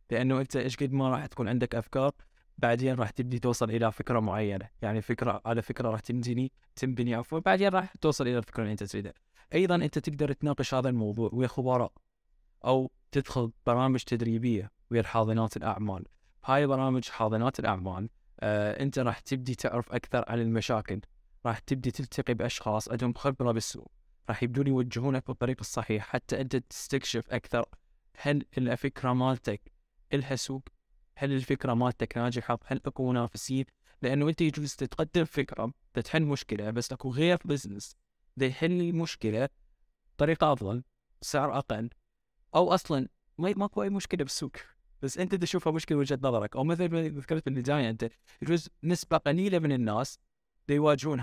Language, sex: English, male